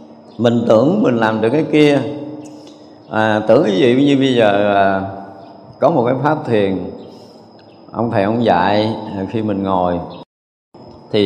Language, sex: Vietnamese, male